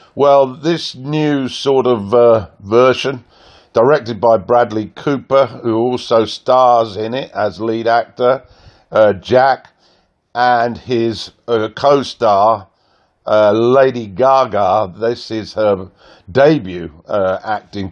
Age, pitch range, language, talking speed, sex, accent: 50-69, 110-130 Hz, English, 110 wpm, male, British